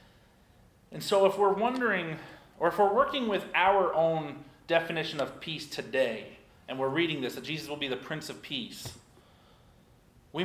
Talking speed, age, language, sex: 165 wpm, 40-59, English, male